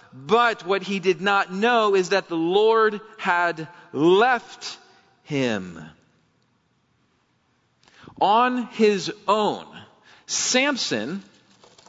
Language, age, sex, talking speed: English, 40-59, male, 85 wpm